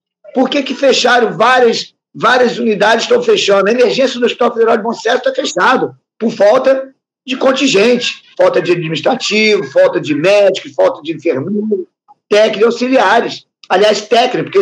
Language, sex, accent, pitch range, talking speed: Portuguese, male, Brazilian, 200-265 Hz, 160 wpm